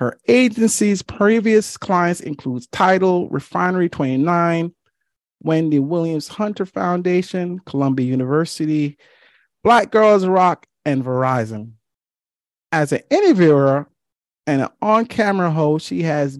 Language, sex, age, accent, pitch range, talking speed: English, male, 40-59, American, 140-190 Hz, 100 wpm